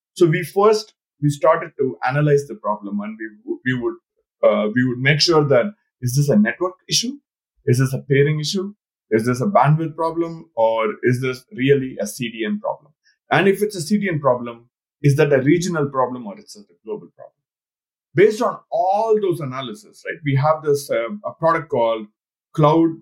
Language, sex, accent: English, male, Indian